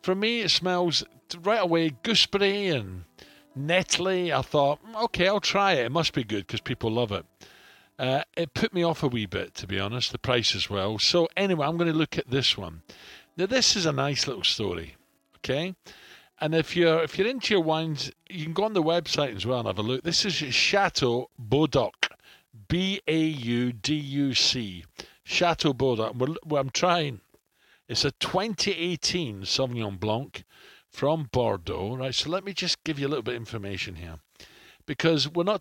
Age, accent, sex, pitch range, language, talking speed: 50-69, British, male, 120-175 Hz, English, 180 wpm